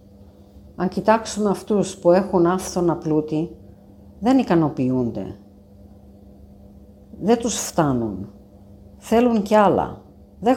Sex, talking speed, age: female, 90 wpm, 50-69